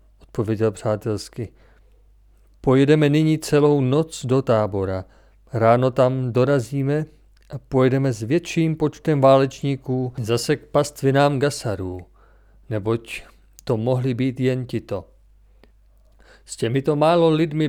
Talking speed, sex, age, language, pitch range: 105 wpm, male, 50-69, Czech, 105-140 Hz